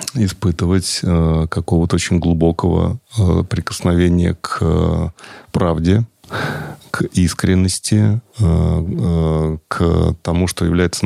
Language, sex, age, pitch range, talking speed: Russian, male, 30-49, 85-95 Hz, 85 wpm